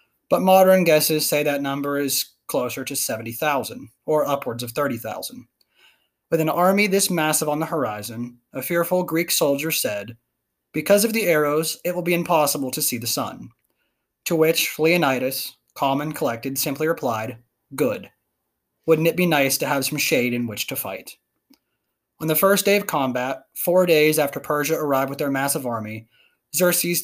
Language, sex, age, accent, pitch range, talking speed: English, male, 20-39, American, 130-165 Hz, 170 wpm